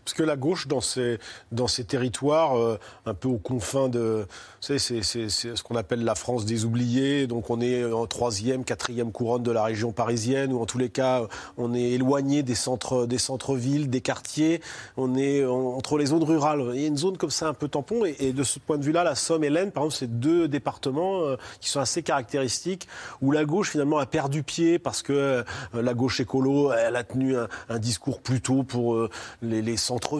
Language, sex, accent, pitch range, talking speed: French, male, French, 115-140 Hz, 220 wpm